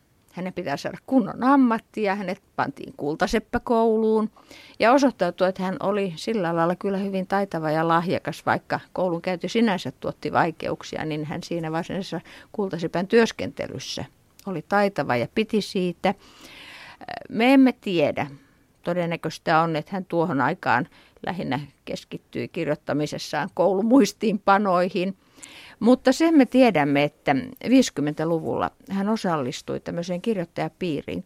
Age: 50-69